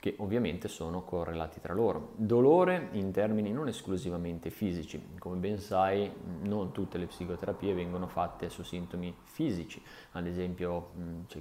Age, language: 20-39, Italian